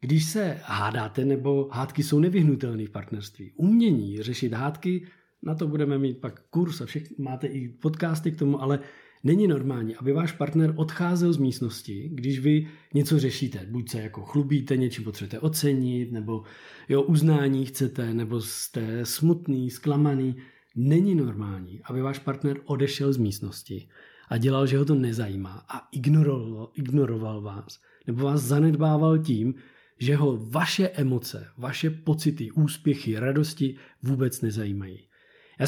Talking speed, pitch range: 145 wpm, 125-155 Hz